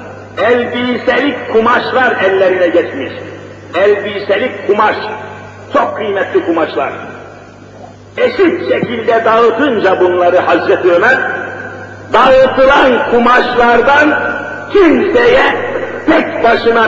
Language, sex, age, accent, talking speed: Turkish, male, 50-69, native, 70 wpm